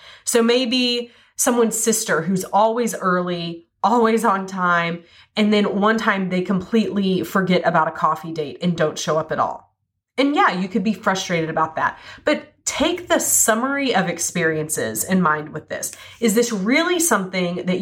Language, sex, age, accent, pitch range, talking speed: English, female, 30-49, American, 170-235 Hz, 170 wpm